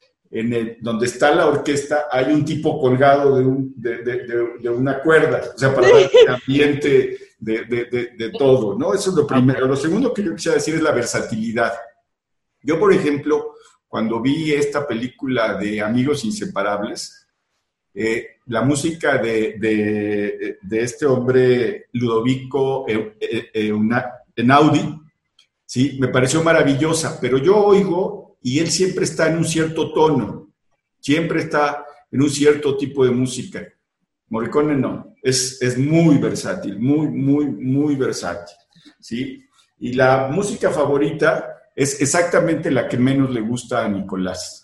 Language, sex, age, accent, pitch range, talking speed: Spanish, male, 50-69, Mexican, 120-155 Hz, 150 wpm